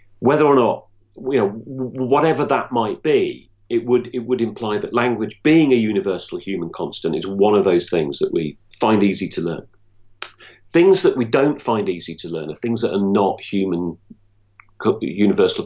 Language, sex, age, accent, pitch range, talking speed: English, male, 40-59, British, 100-125 Hz, 180 wpm